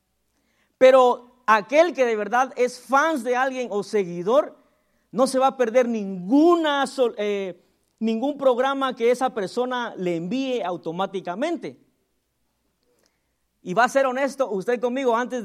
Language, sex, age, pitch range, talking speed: Spanish, male, 40-59, 220-280 Hz, 130 wpm